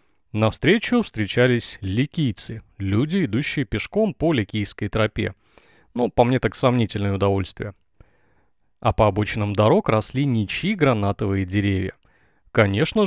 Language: Russian